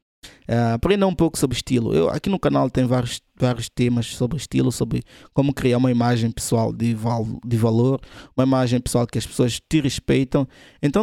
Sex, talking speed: male, 190 wpm